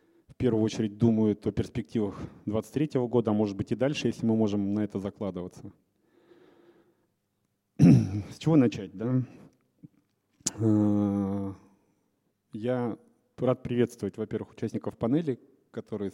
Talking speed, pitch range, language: 110 wpm, 105-120 Hz, Russian